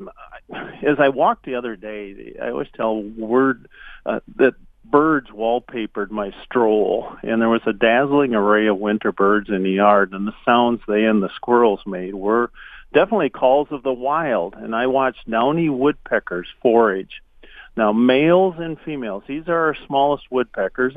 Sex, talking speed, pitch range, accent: male, 165 wpm, 105-140 Hz, American